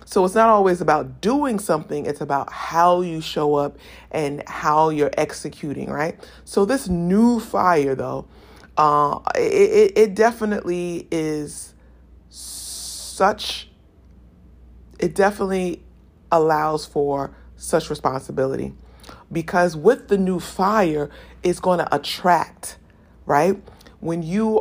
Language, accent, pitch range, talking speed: English, American, 135-185 Hz, 110 wpm